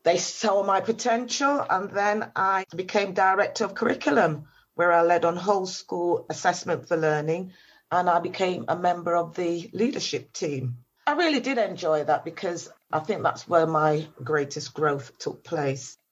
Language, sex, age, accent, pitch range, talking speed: English, female, 40-59, British, 155-190 Hz, 165 wpm